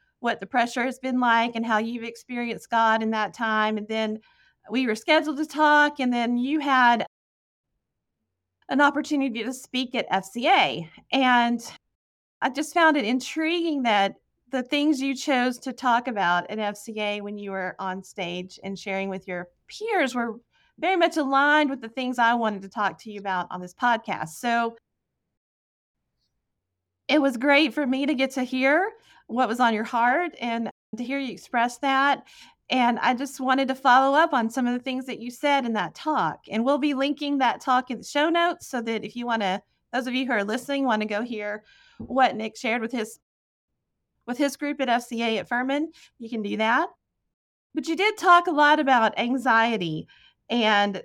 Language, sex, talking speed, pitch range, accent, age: English, female, 195 wpm, 215-275 Hz, American, 40-59